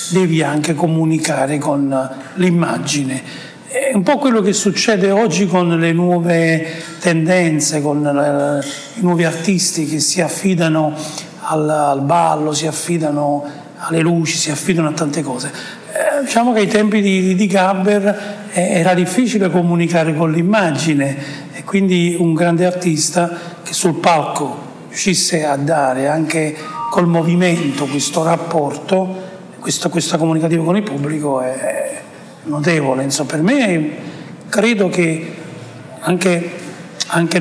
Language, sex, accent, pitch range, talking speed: Italian, male, native, 155-180 Hz, 130 wpm